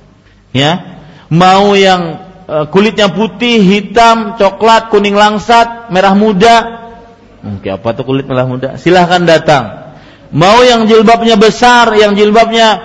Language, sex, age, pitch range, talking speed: Malay, male, 40-59, 155-220 Hz, 115 wpm